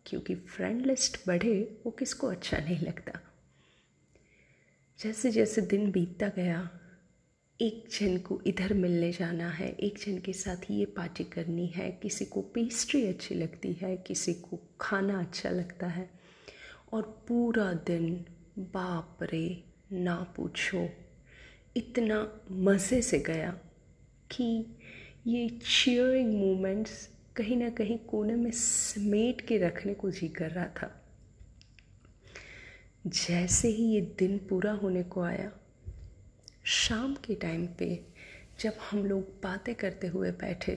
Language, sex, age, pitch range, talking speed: Hindi, female, 30-49, 170-220 Hz, 130 wpm